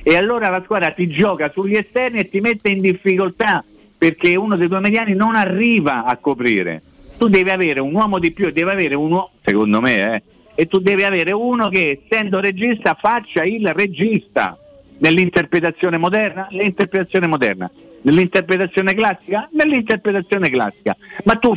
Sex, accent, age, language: male, native, 50-69, Italian